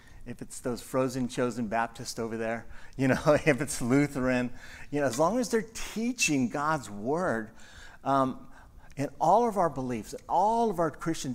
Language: English